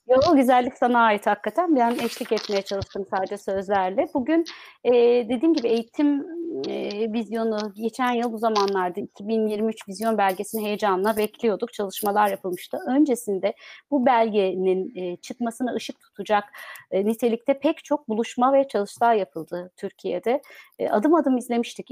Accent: native